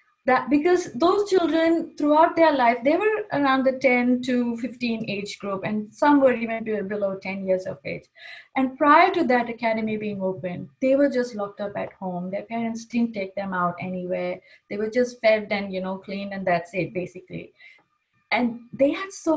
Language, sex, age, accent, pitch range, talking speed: English, female, 20-39, Indian, 230-300 Hz, 190 wpm